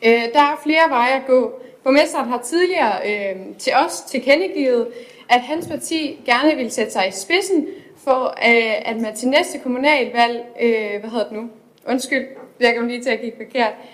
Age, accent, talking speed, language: 20-39, native, 170 wpm, Danish